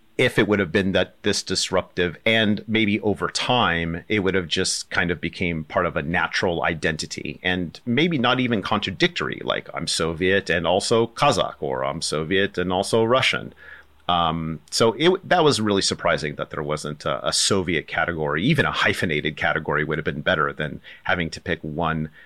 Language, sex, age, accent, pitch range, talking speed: English, male, 40-59, American, 80-115 Hz, 180 wpm